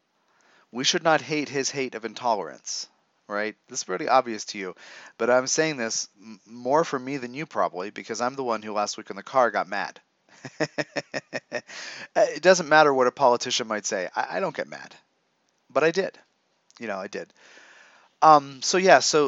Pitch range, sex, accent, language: 115-150 Hz, male, American, English